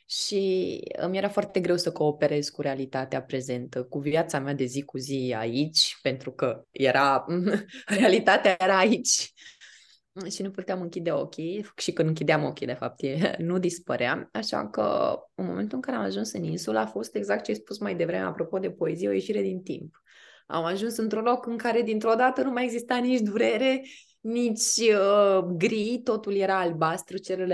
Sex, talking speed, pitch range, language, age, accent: female, 180 wpm, 150-200 Hz, Romanian, 20-39, native